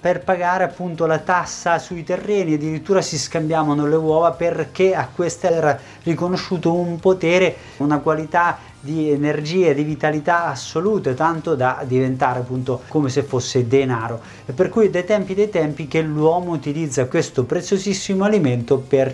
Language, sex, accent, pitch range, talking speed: Italian, male, native, 145-190 Hz, 155 wpm